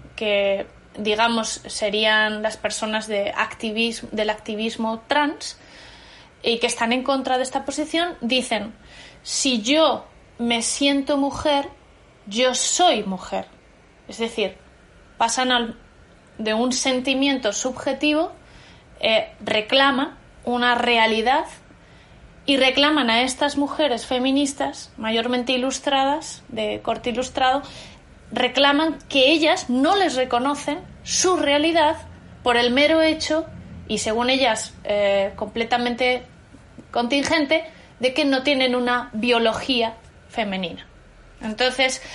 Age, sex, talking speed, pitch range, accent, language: 20-39, female, 105 wpm, 230-280 Hz, Spanish, Spanish